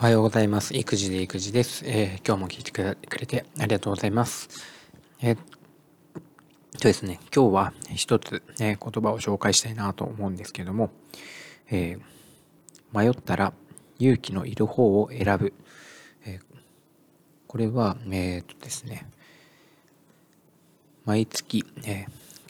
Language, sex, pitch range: Japanese, male, 105-130 Hz